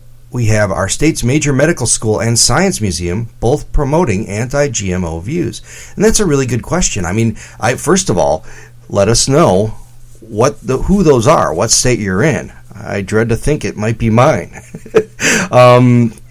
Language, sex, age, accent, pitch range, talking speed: English, male, 40-59, American, 105-125 Hz, 170 wpm